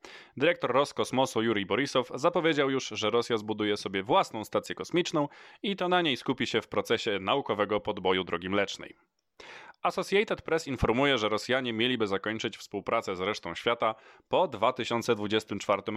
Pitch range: 105-145 Hz